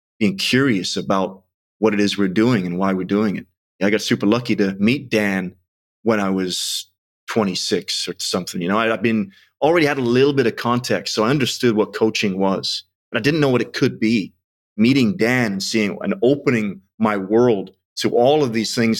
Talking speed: 205 wpm